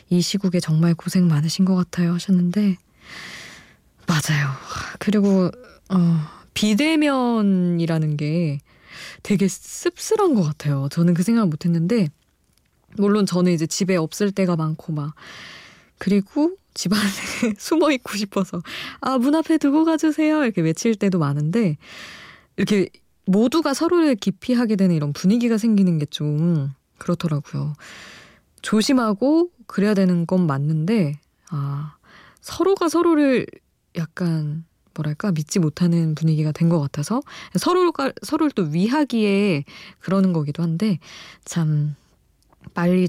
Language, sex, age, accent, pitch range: Korean, female, 20-39, native, 160-210 Hz